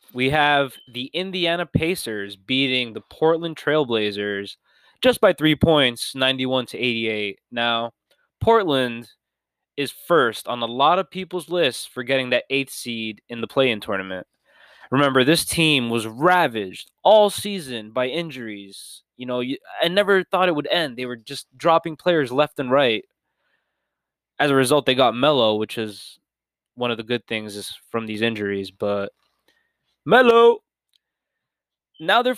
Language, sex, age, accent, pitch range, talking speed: English, male, 20-39, American, 120-180 Hz, 145 wpm